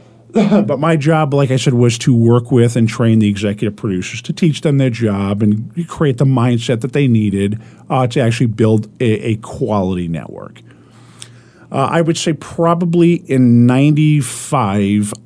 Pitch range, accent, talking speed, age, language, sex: 115-140 Hz, American, 165 wpm, 50-69, English, male